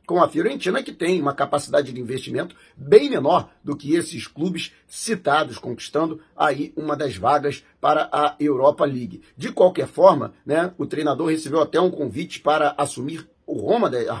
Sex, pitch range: male, 145-215 Hz